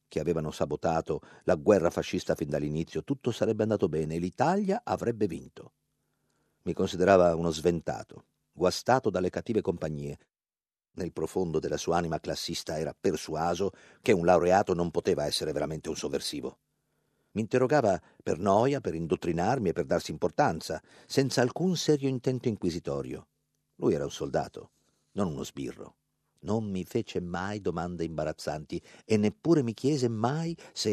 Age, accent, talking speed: 50-69, native, 145 wpm